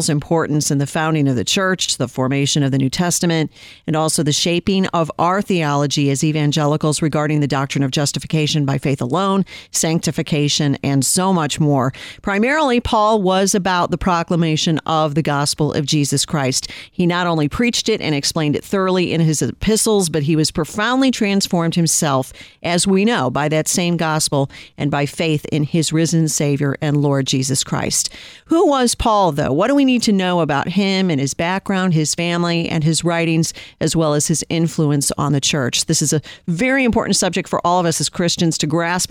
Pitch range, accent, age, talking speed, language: 150-190 Hz, American, 50-69, 190 wpm, English